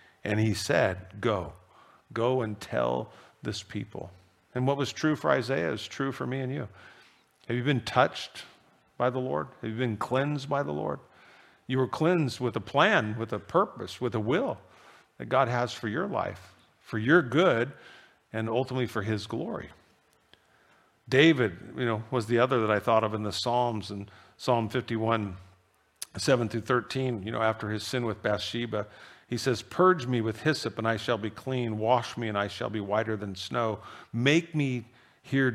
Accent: American